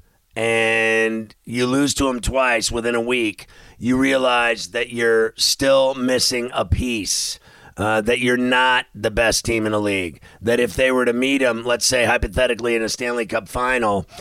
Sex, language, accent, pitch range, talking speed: male, English, American, 110-125 Hz, 175 wpm